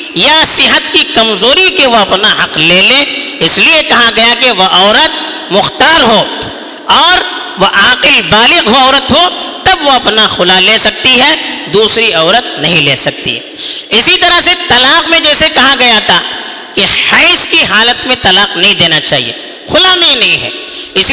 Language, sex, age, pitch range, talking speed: Urdu, female, 50-69, 215-335 Hz, 180 wpm